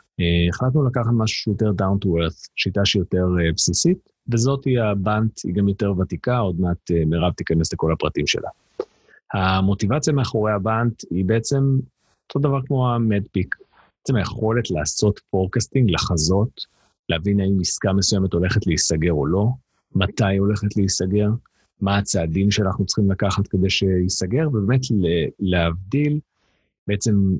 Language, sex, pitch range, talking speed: Hebrew, male, 95-115 Hz, 130 wpm